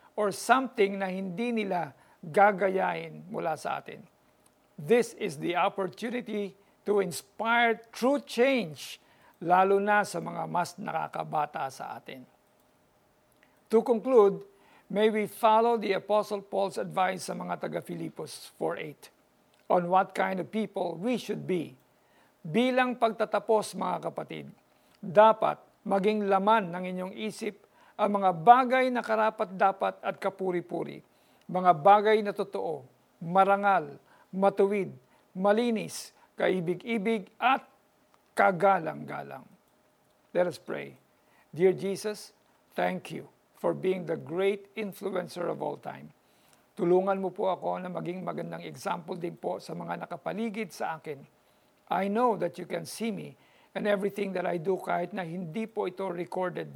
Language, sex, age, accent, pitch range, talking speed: Filipino, male, 50-69, native, 180-215 Hz, 130 wpm